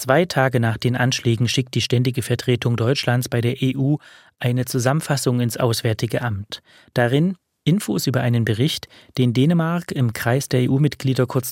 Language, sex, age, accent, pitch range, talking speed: German, male, 30-49, German, 115-140 Hz, 155 wpm